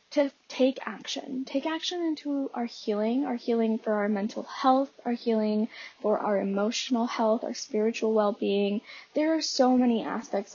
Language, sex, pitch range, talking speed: English, female, 220-285 Hz, 160 wpm